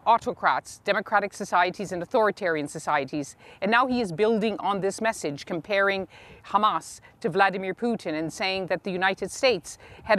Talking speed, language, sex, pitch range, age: 155 wpm, English, female, 175-220 Hz, 50-69